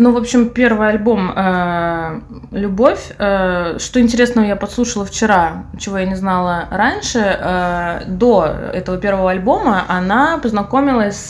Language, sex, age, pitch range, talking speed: Russian, female, 20-39, 180-230 Hz, 135 wpm